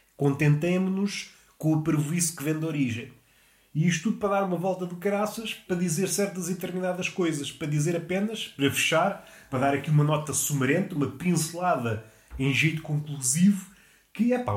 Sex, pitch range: male, 135-195 Hz